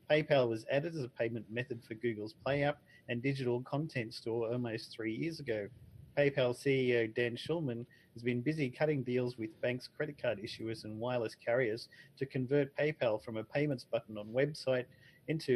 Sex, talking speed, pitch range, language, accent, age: male, 175 wpm, 115-135 Hz, English, Australian, 40-59